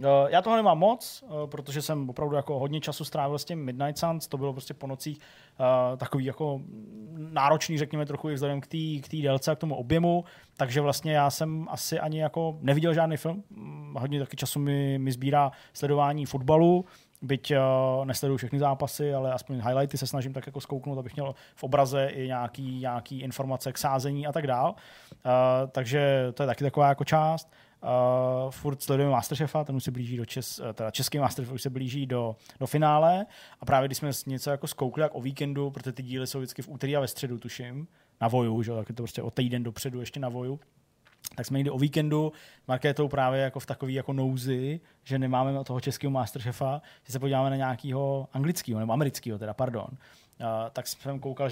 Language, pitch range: Czech, 130-150 Hz